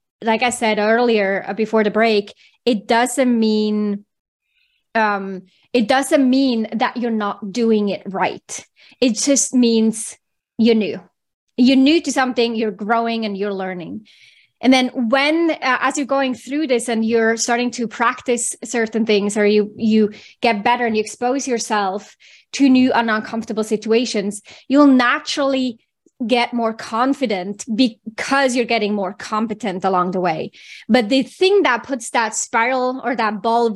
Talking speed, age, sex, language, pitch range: 155 wpm, 20-39, female, English, 220-255 Hz